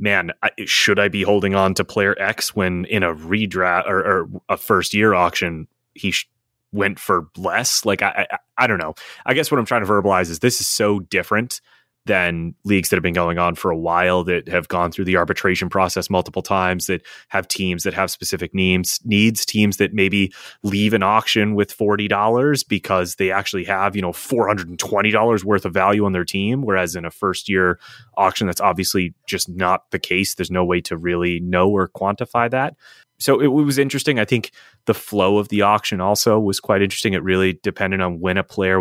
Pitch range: 90-110 Hz